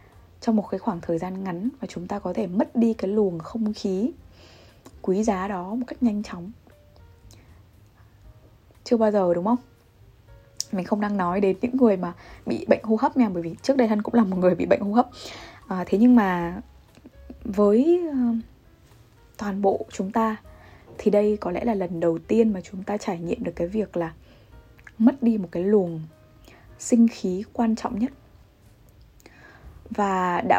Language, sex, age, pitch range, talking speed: Vietnamese, female, 20-39, 170-230 Hz, 180 wpm